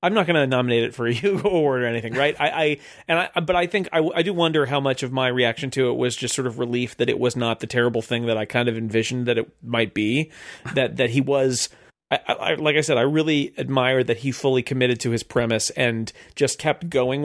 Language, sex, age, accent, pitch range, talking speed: English, male, 40-59, American, 115-140 Hz, 260 wpm